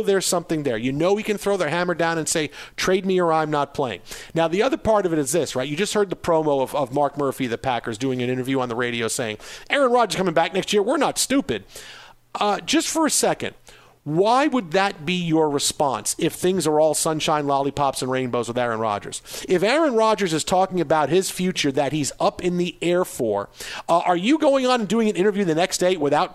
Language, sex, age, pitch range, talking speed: English, male, 50-69, 150-200 Hz, 240 wpm